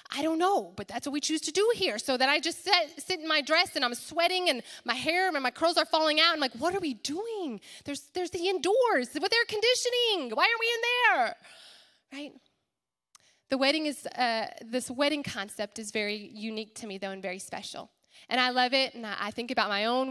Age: 20-39